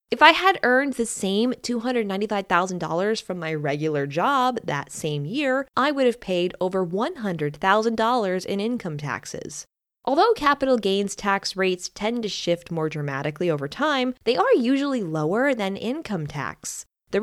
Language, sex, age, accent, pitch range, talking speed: English, female, 10-29, American, 170-245 Hz, 150 wpm